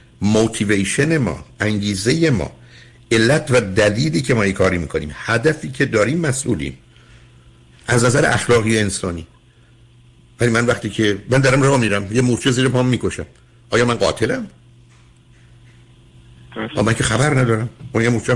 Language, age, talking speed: Persian, 60-79, 140 wpm